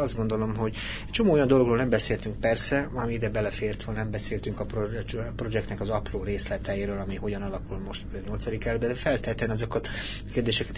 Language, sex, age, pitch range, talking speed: Hungarian, male, 30-49, 100-120 Hz, 175 wpm